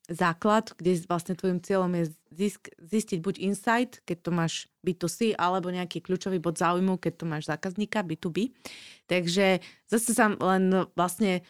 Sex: female